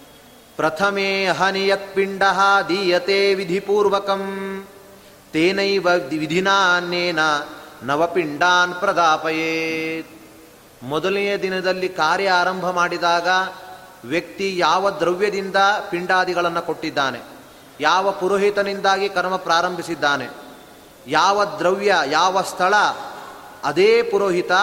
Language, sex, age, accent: Kannada, male, 30-49, native